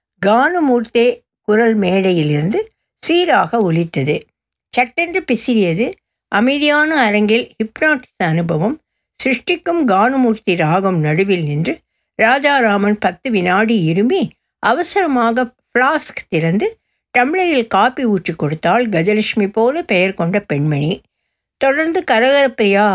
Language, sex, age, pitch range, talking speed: Tamil, female, 60-79, 180-255 Hz, 90 wpm